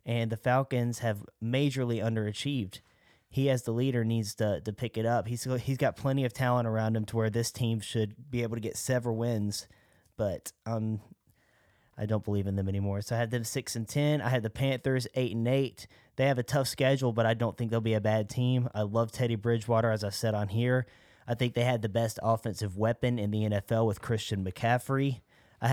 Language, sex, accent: English, male, American